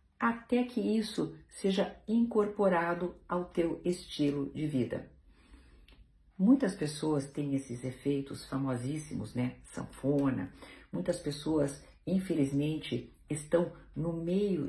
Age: 50-69